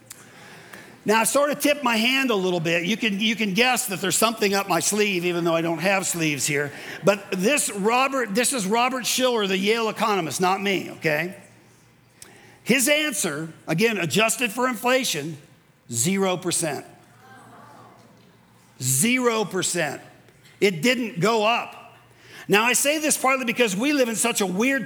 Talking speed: 155 wpm